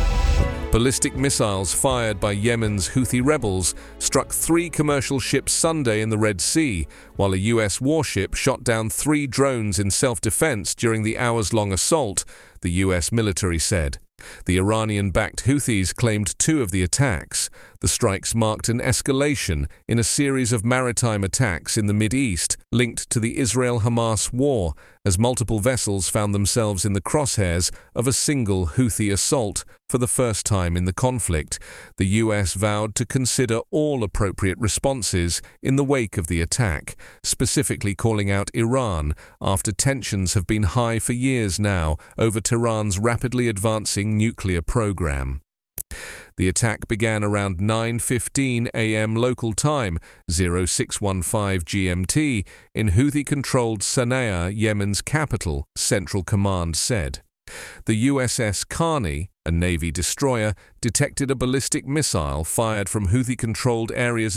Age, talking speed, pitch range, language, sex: 40-59, 135 wpm, 95-125 Hz, English, male